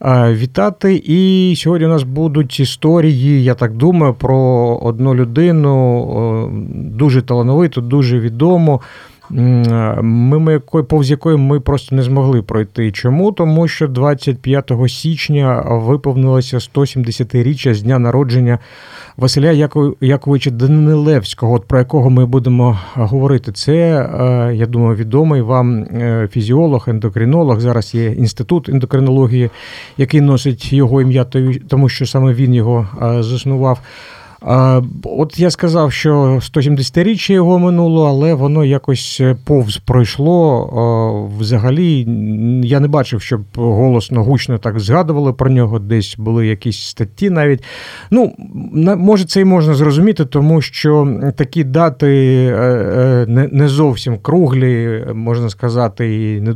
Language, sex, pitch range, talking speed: Ukrainian, male, 120-150 Hz, 115 wpm